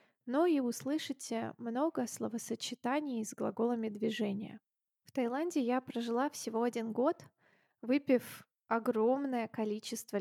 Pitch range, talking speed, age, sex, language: 220-260 Hz, 105 wpm, 20-39, female, Russian